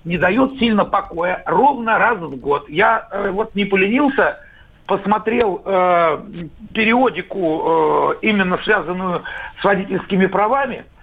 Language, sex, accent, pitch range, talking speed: Russian, male, native, 170-235 Hz, 120 wpm